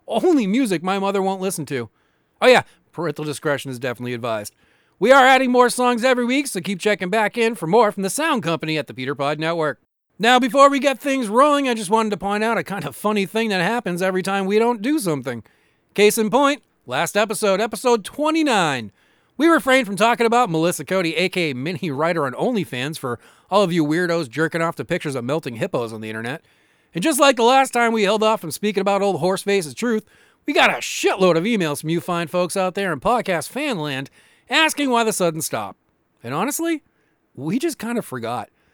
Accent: American